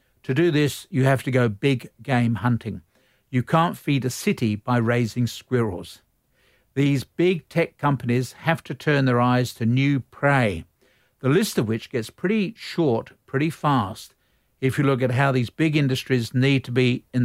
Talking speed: 175 wpm